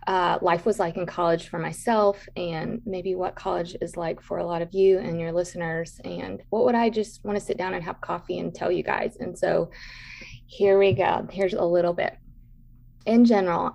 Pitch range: 170-205 Hz